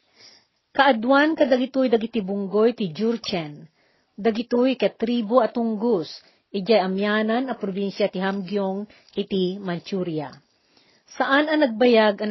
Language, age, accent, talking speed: Filipino, 40-59, native, 110 wpm